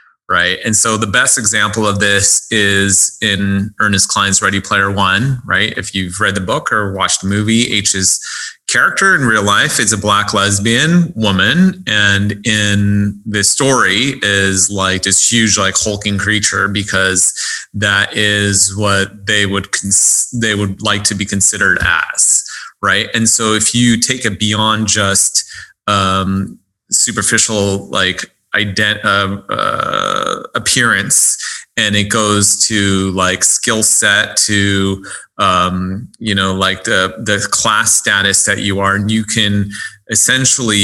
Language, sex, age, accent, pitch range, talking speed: English, male, 30-49, American, 100-110 Hz, 145 wpm